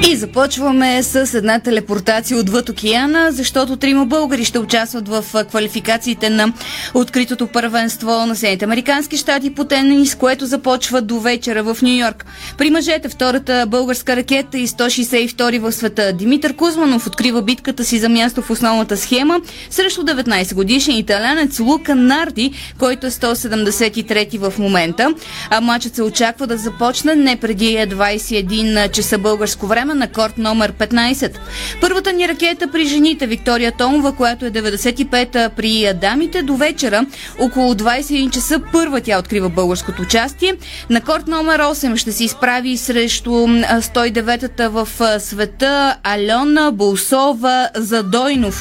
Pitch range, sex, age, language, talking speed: 225-275 Hz, female, 20-39, Bulgarian, 135 wpm